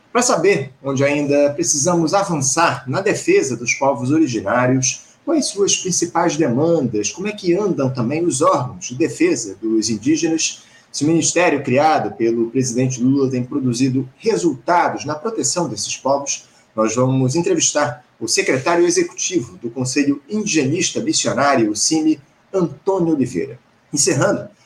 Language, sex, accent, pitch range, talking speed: Portuguese, male, Brazilian, 130-170 Hz, 135 wpm